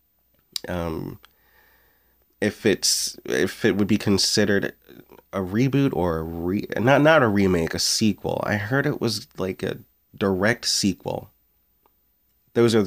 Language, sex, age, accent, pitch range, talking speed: English, male, 30-49, American, 90-110 Hz, 135 wpm